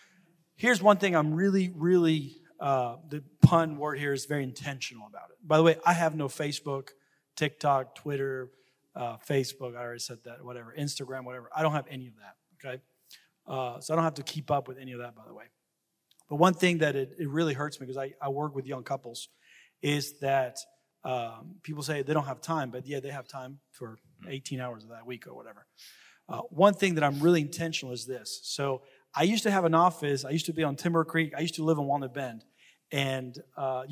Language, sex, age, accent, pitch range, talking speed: English, male, 40-59, American, 135-170 Hz, 225 wpm